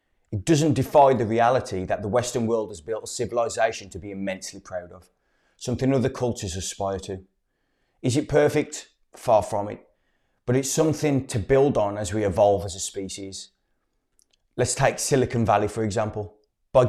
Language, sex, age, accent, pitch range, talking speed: English, male, 20-39, British, 100-135 Hz, 170 wpm